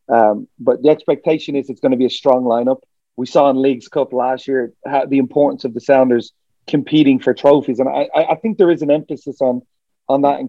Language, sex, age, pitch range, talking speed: English, male, 30-49, 125-150 Hz, 230 wpm